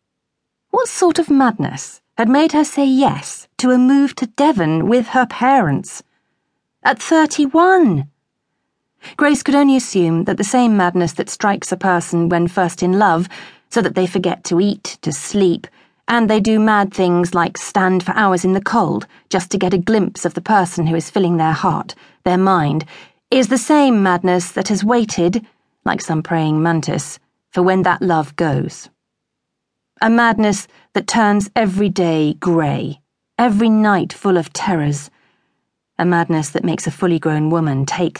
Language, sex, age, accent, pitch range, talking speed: English, female, 40-59, British, 165-225 Hz, 170 wpm